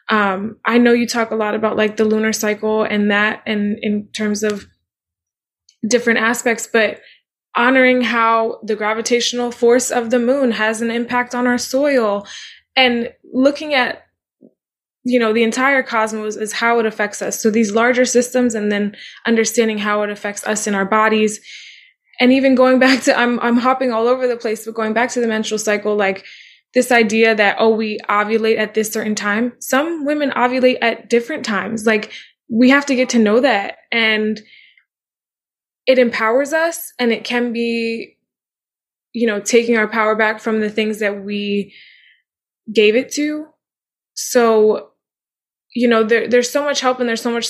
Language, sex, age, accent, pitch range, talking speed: English, female, 20-39, American, 215-245 Hz, 175 wpm